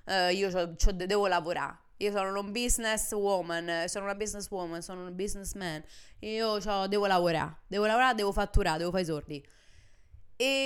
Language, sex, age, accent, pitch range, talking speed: Italian, female, 20-39, native, 160-210 Hz, 175 wpm